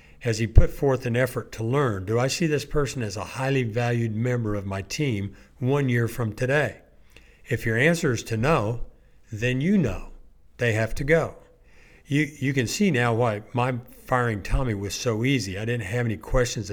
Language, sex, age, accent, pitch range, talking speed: English, male, 60-79, American, 105-130 Hz, 195 wpm